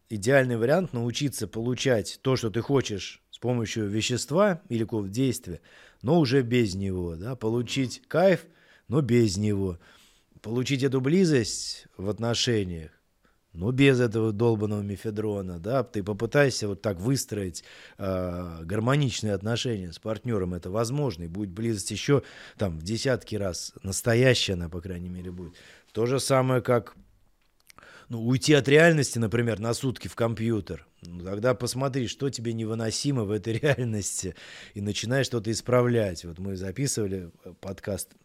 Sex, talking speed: male, 145 wpm